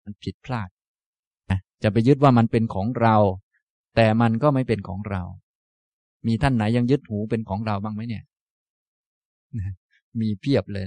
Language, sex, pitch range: Thai, male, 100-125 Hz